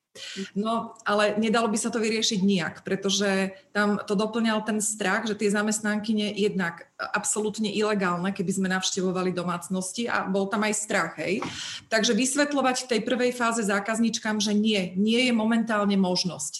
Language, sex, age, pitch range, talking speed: Slovak, female, 30-49, 190-220 Hz, 165 wpm